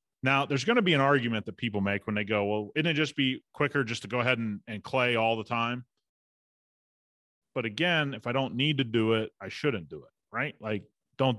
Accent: American